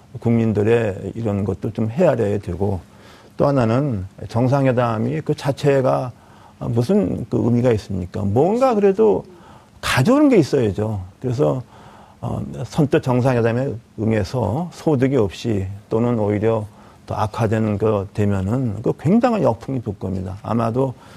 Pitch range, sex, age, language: 105-130 Hz, male, 40-59, Korean